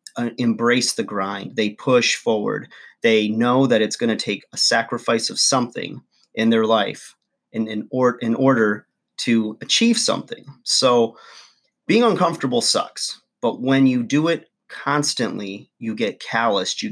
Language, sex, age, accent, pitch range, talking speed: English, male, 30-49, American, 110-130 Hz, 145 wpm